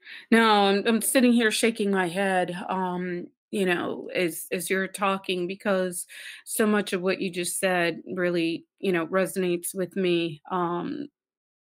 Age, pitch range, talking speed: 30-49, 170-195 Hz, 155 wpm